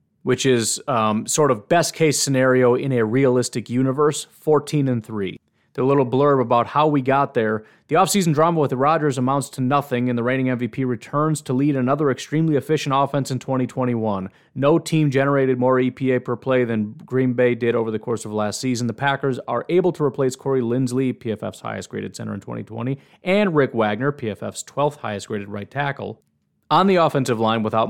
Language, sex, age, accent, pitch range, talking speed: English, male, 30-49, American, 115-140 Hz, 185 wpm